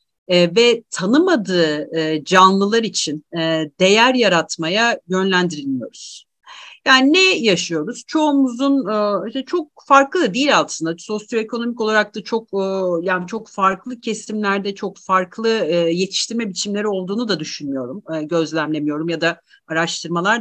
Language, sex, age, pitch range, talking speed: Turkish, female, 50-69, 175-245 Hz, 105 wpm